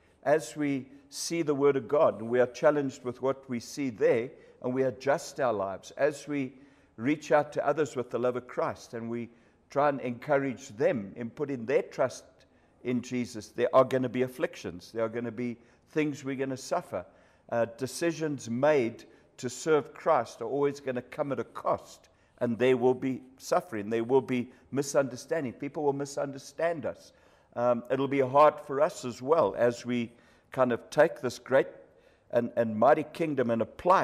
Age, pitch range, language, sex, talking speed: 60-79, 120-145 Hz, English, male, 190 wpm